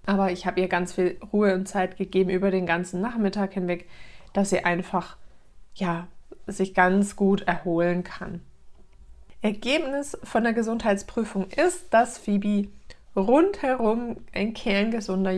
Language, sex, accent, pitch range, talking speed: German, female, German, 185-205 Hz, 135 wpm